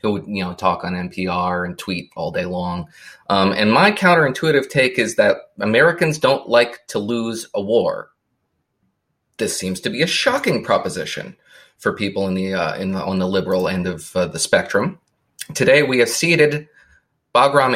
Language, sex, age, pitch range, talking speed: English, male, 30-49, 90-105 Hz, 180 wpm